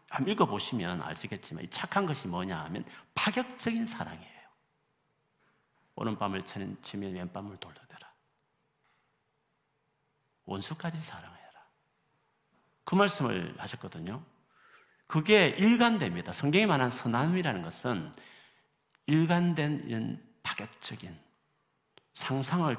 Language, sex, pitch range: Korean, male, 95-155 Hz